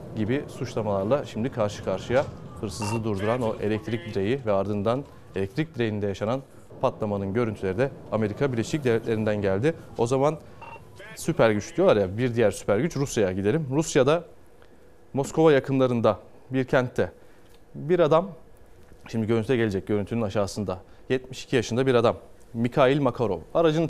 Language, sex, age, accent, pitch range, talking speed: Turkish, male, 30-49, native, 105-135 Hz, 135 wpm